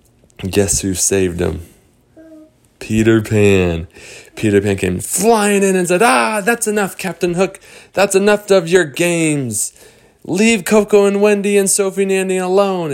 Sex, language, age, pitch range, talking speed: male, English, 20-39, 100-125 Hz, 150 wpm